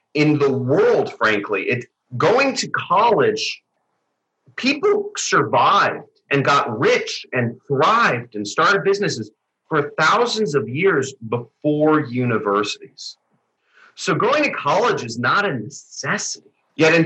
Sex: male